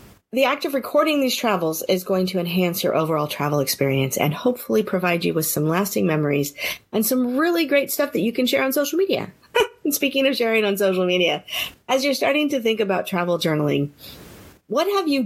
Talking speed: 200 wpm